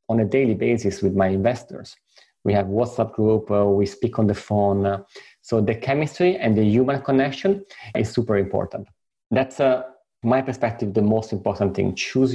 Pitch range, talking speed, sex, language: 110-135 Hz, 180 wpm, male, English